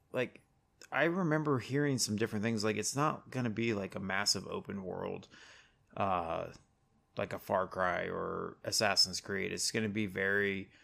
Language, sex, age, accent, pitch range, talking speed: English, male, 20-39, American, 100-115 Hz, 170 wpm